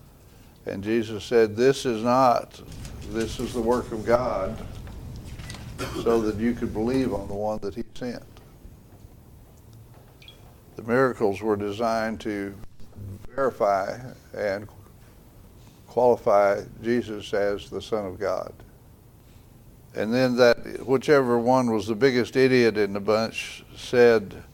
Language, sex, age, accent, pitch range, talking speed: English, male, 60-79, American, 110-130 Hz, 120 wpm